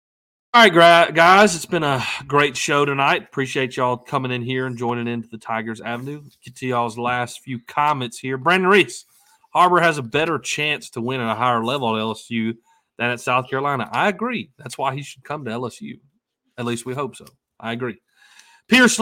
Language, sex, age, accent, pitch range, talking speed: English, male, 30-49, American, 115-145 Hz, 200 wpm